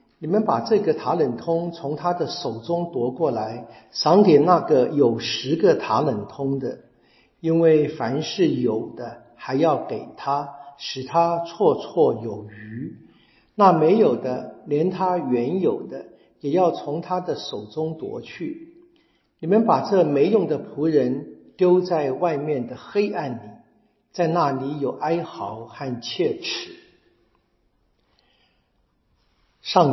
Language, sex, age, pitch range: Chinese, male, 50-69, 120-155 Hz